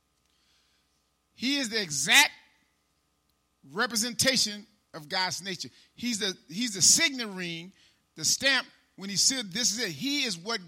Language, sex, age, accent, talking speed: English, male, 40-59, American, 140 wpm